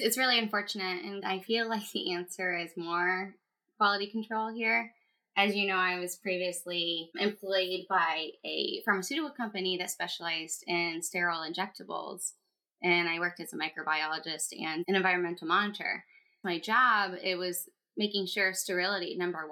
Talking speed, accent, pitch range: 150 wpm, American, 175-205 Hz